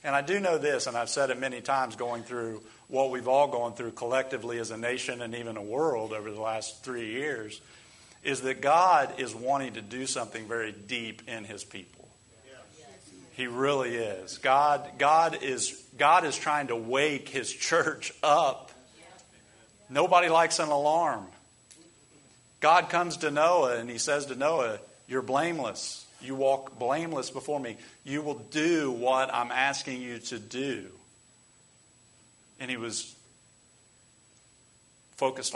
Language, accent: English, American